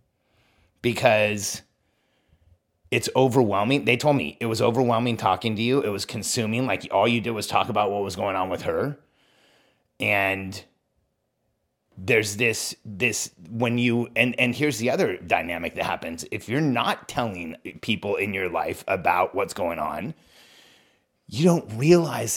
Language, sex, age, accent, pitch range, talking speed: English, male, 30-49, American, 110-140 Hz, 155 wpm